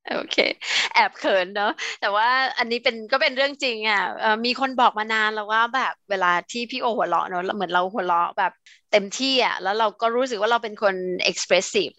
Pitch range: 200-250 Hz